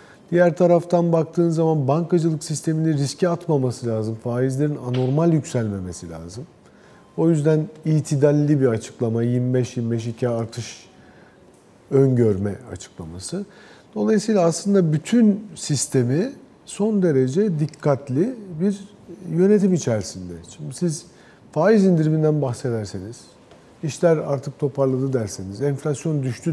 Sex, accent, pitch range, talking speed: male, native, 120-170 Hz, 95 wpm